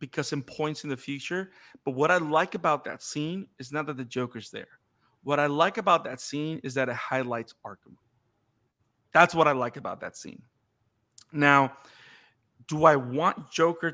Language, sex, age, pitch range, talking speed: English, male, 30-49, 125-165 Hz, 180 wpm